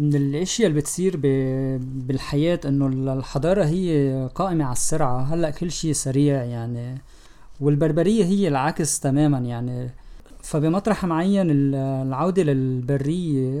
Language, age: Arabic, 20-39